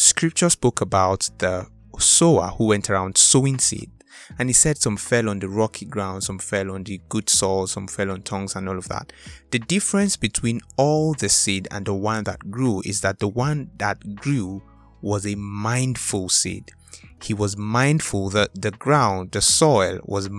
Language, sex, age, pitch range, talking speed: English, male, 20-39, 95-115 Hz, 185 wpm